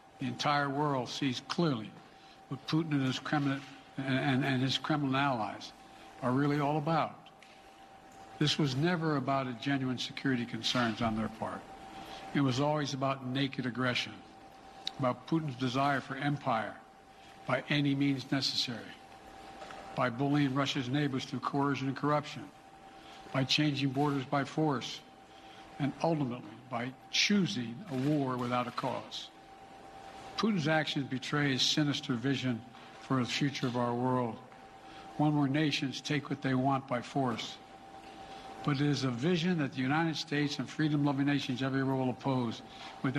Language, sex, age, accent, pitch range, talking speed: English, male, 60-79, American, 125-145 Hz, 145 wpm